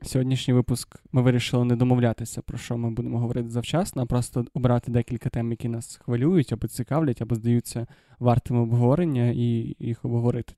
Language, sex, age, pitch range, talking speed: Ukrainian, male, 20-39, 120-140 Hz, 165 wpm